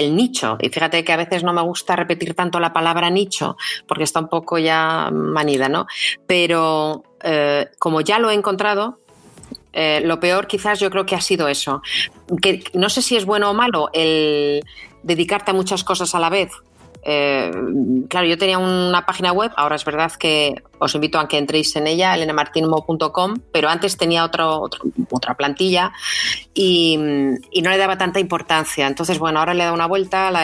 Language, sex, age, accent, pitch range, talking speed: Spanish, female, 30-49, Spanish, 150-180 Hz, 185 wpm